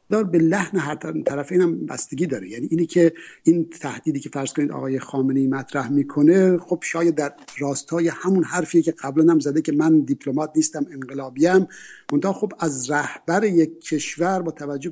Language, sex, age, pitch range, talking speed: Persian, male, 60-79, 145-185 Hz, 165 wpm